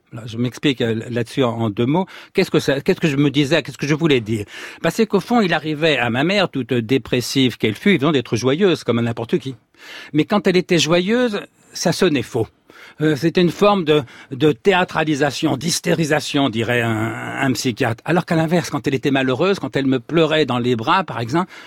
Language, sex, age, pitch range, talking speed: French, male, 60-79, 125-170 Hz, 205 wpm